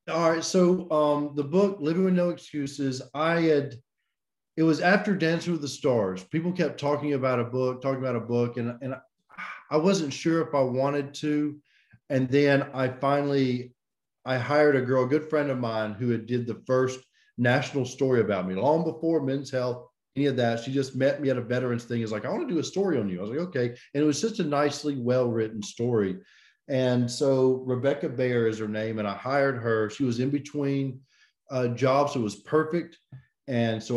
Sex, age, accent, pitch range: male, 40-59, American, 120-150 Hz